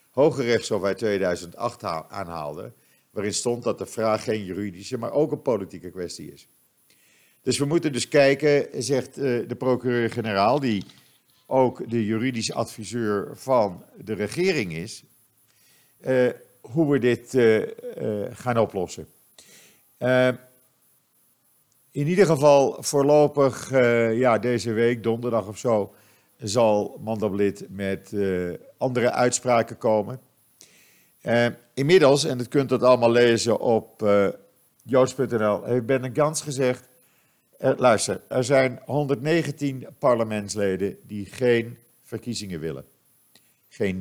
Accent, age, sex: Dutch, 50-69, male